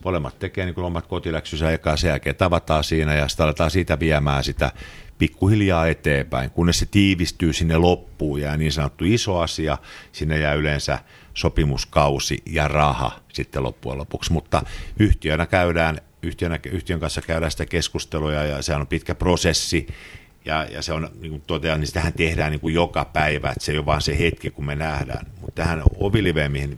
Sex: male